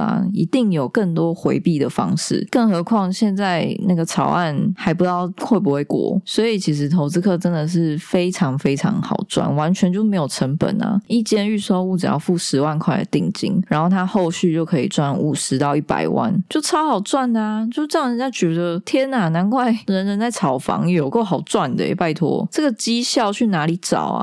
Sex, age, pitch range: female, 20-39, 155-205 Hz